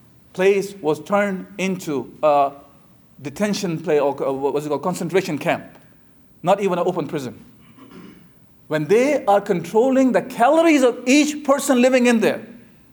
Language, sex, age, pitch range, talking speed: English, male, 50-69, 200-260 Hz, 145 wpm